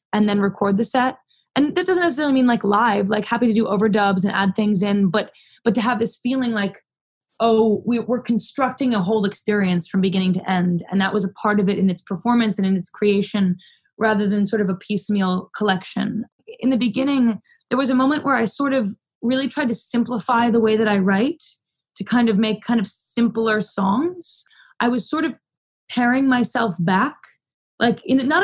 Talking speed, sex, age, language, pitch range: 205 wpm, female, 20-39, English, 205-240 Hz